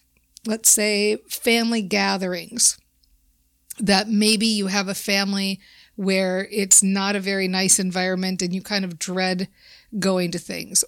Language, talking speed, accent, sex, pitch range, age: English, 140 wpm, American, female, 185-225 Hz, 50-69